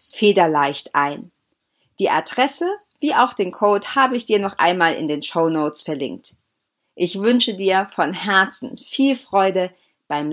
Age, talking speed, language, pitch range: 40-59, 150 wpm, German, 175-255 Hz